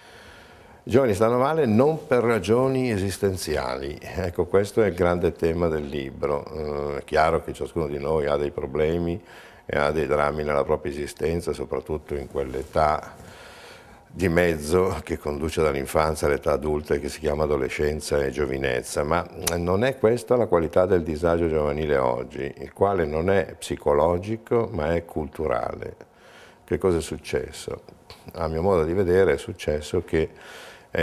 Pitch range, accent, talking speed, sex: 75-90 Hz, native, 155 wpm, male